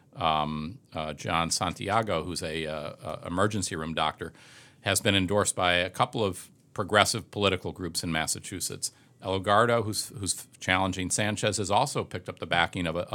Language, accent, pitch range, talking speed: English, American, 90-110 Hz, 165 wpm